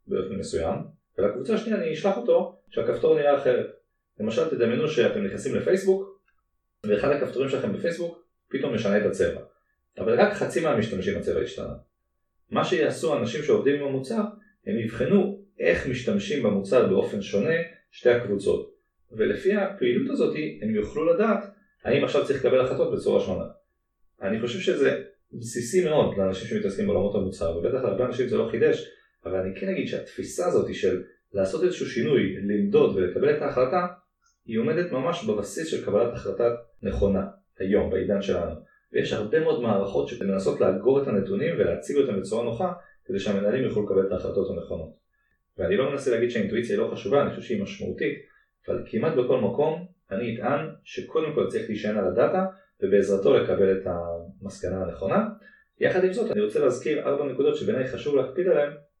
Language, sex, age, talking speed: Hebrew, male, 30-49, 150 wpm